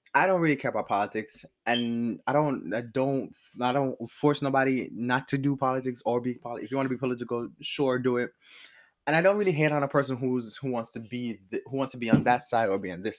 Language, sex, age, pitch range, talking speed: English, male, 20-39, 115-145 Hz, 255 wpm